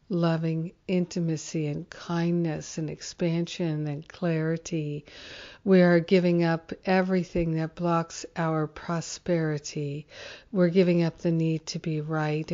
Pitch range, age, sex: 155-175 Hz, 60-79, female